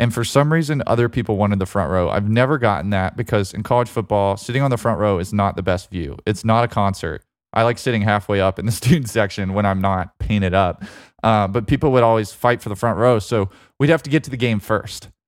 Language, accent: English, American